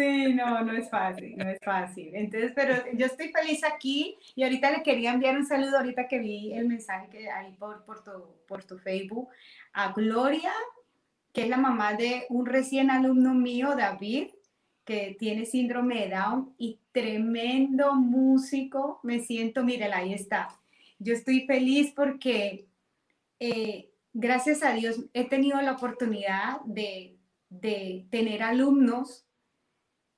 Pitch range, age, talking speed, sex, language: 210-260 Hz, 30-49, 145 wpm, female, Spanish